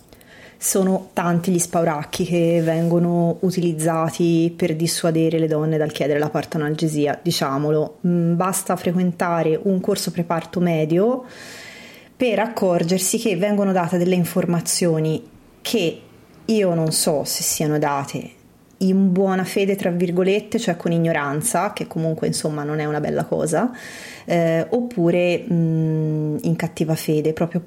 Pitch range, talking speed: 155-180 Hz, 130 wpm